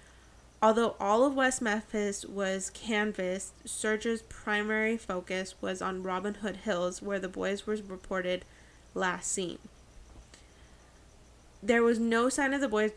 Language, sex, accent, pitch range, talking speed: English, female, American, 185-215 Hz, 135 wpm